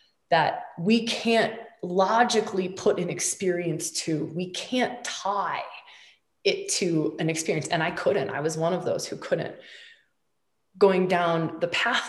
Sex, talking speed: female, 145 wpm